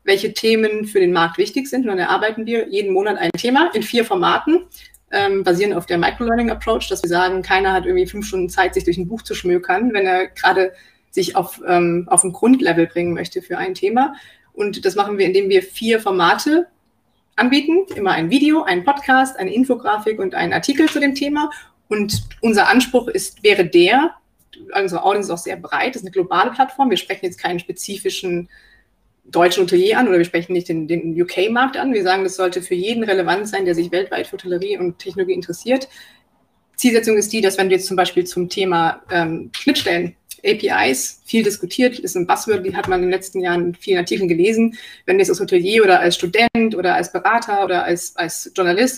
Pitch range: 185-300 Hz